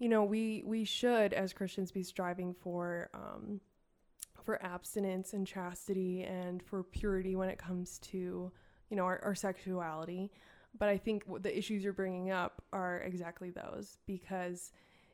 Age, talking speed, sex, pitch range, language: 20-39, 150 wpm, female, 180-205 Hz, English